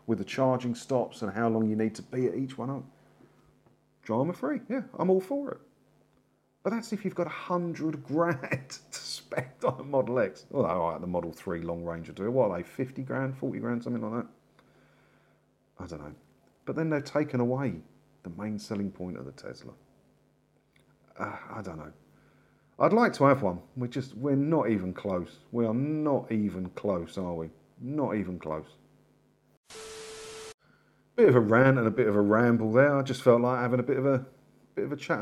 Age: 40-59